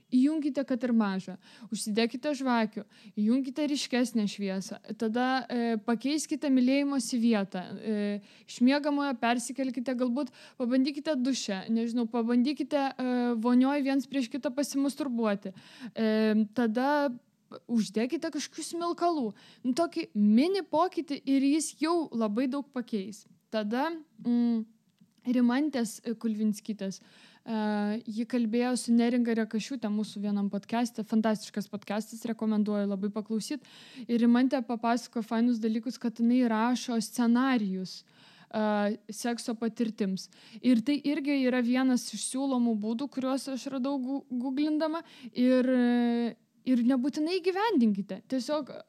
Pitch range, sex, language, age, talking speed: 220-270 Hz, female, English, 20-39, 115 wpm